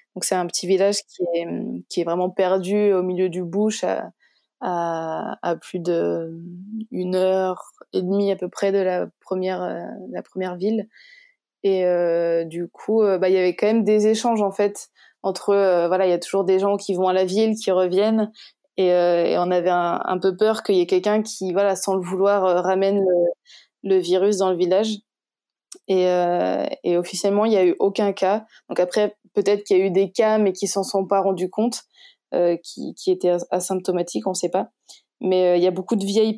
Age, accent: 20-39, French